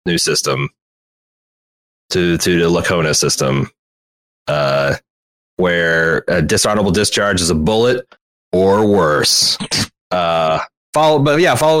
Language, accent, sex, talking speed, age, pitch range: English, American, male, 110 wpm, 30-49, 90-120 Hz